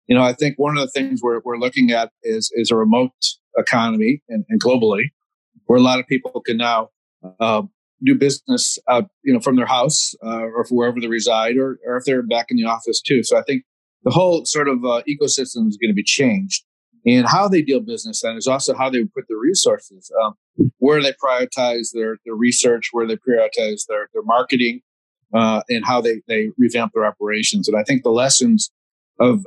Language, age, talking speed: English, 40-59, 215 wpm